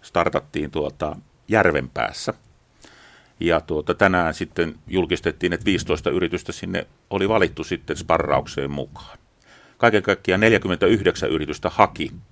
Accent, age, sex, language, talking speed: native, 40-59, male, Finnish, 105 wpm